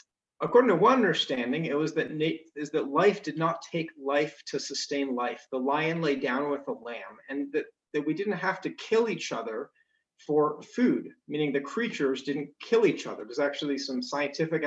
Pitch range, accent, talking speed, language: 140-190 Hz, American, 190 wpm, English